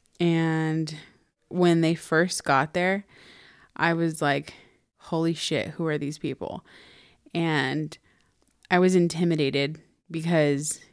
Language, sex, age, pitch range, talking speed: English, female, 20-39, 155-175 Hz, 110 wpm